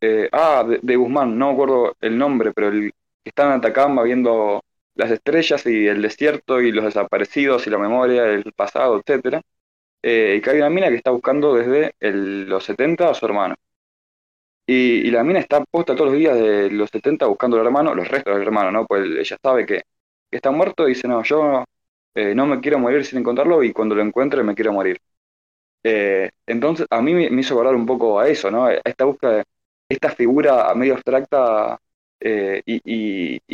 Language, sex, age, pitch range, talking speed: Spanish, male, 20-39, 100-135 Hz, 200 wpm